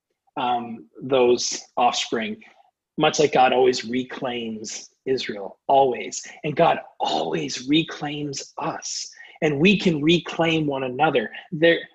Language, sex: English, male